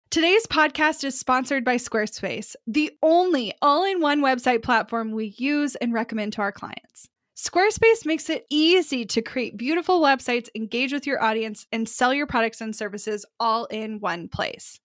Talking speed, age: 160 wpm, 10-29